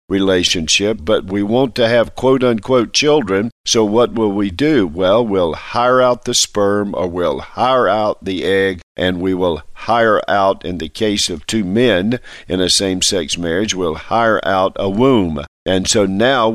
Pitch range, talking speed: 95-115 Hz, 180 wpm